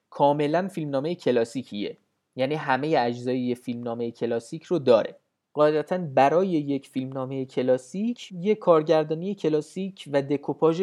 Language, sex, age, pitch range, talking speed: Persian, male, 30-49, 135-175 Hz, 110 wpm